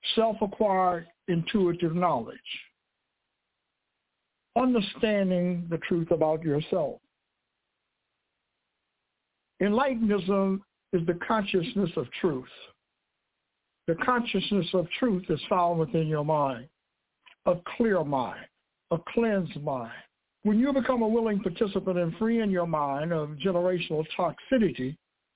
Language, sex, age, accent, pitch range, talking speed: English, male, 60-79, American, 170-225 Hz, 100 wpm